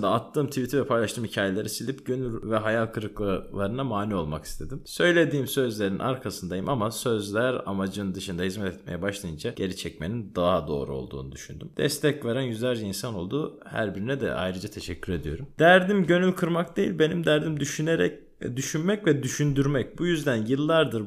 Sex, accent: male, native